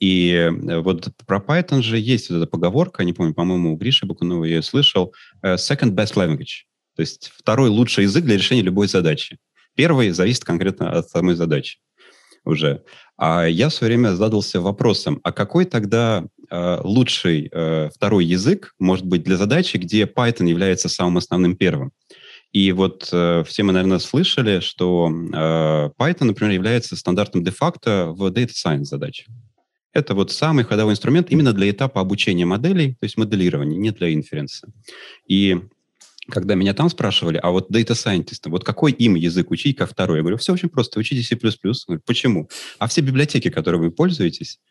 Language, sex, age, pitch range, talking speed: Russian, male, 30-49, 85-120 Hz, 170 wpm